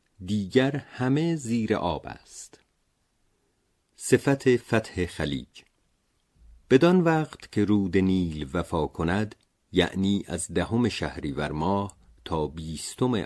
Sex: male